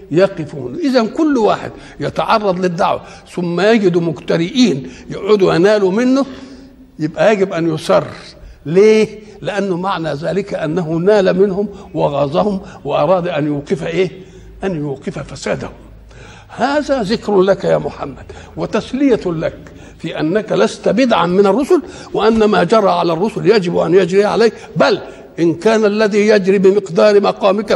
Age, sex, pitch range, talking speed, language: 60-79, male, 160-210 Hz, 130 wpm, Arabic